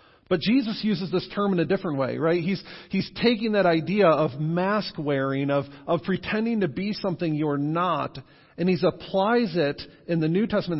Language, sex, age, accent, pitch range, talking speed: English, male, 40-59, American, 155-195 Hz, 190 wpm